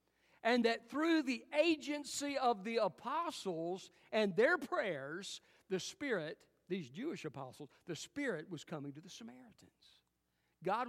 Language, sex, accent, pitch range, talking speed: English, male, American, 165-225 Hz, 130 wpm